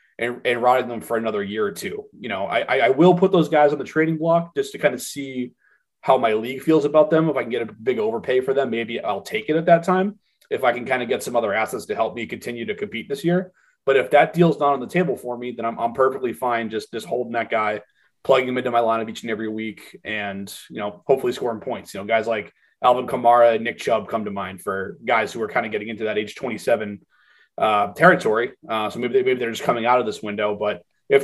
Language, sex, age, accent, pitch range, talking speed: English, male, 30-49, American, 115-165 Hz, 265 wpm